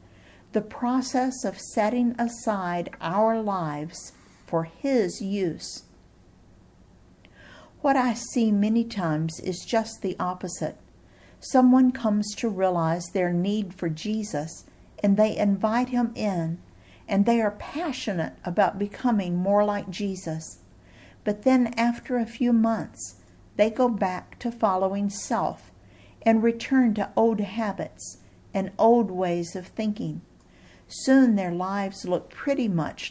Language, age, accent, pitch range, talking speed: English, 50-69, American, 170-230 Hz, 125 wpm